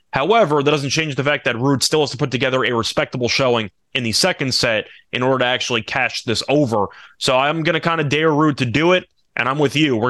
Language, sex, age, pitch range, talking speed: English, male, 20-39, 115-150 Hz, 255 wpm